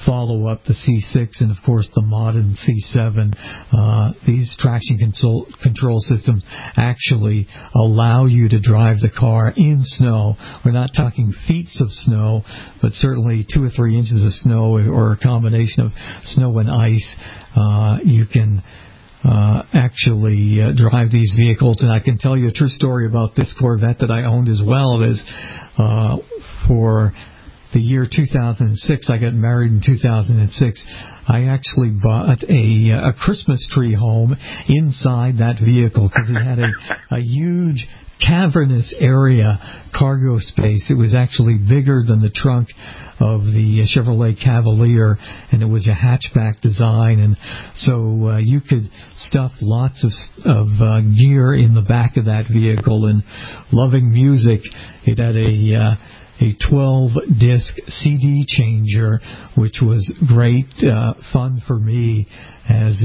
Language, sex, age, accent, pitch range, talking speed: English, male, 50-69, American, 110-130 Hz, 150 wpm